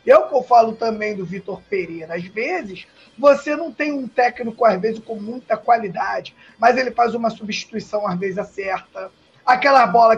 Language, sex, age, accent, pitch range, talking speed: Portuguese, male, 20-39, Brazilian, 210-285 Hz, 185 wpm